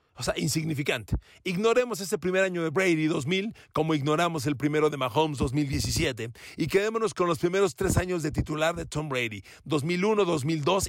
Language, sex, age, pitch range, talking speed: Spanish, male, 40-59, 130-190 Hz, 170 wpm